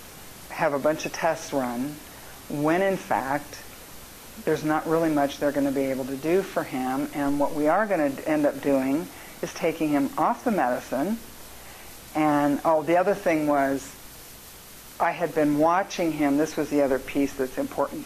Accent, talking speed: American, 185 wpm